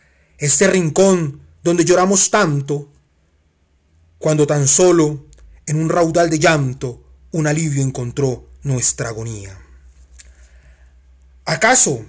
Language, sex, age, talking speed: Spanish, male, 30-49, 95 wpm